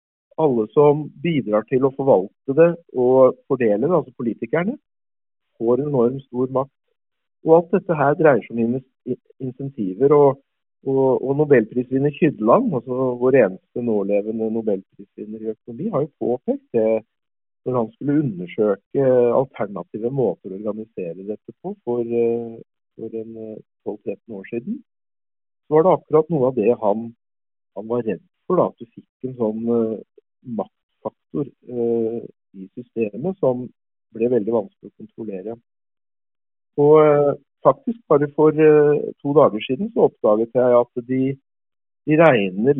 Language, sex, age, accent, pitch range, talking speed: English, male, 50-69, Norwegian, 110-145 Hz, 130 wpm